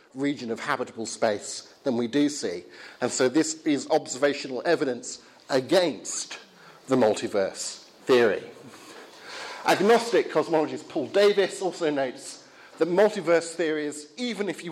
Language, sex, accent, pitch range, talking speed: English, male, British, 140-200 Hz, 120 wpm